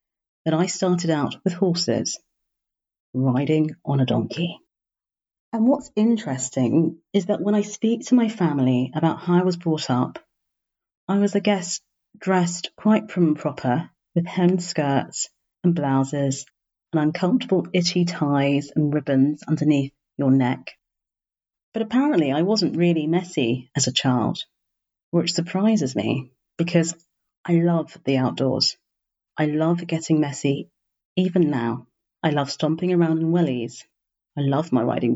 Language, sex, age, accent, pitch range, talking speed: English, female, 40-59, British, 145-185 Hz, 140 wpm